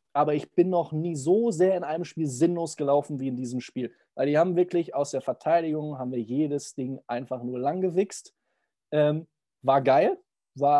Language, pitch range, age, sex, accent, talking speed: German, 140-175 Hz, 20-39, male, German, 190 wpm